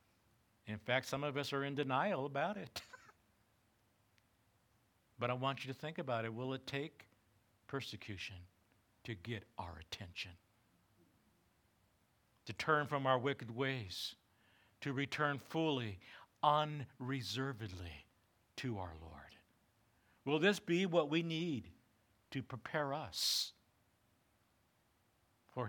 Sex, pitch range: male, 110-160 Hz